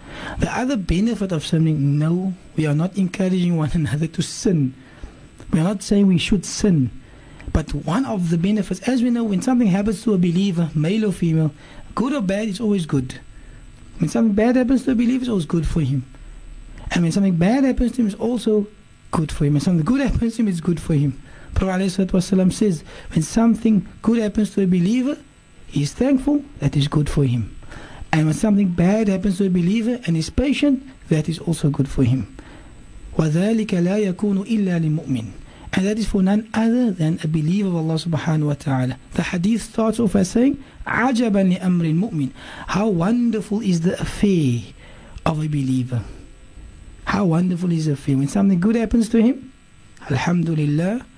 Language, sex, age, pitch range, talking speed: English, male, 60-79, 155-215 Hz, 180 wpm